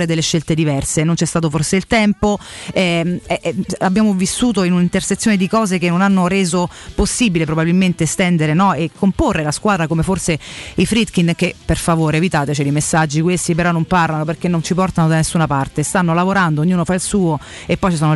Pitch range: 160-195 Hz